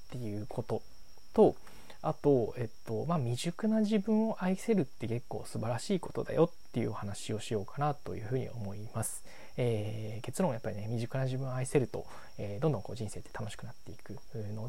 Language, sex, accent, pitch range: Japanese, male, native, 110-145 Hz